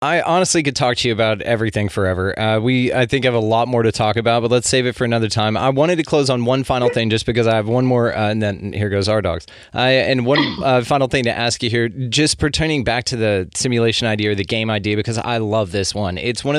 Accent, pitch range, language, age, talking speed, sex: American, 105-125 Hz, English, 20-39, 275 wpm, male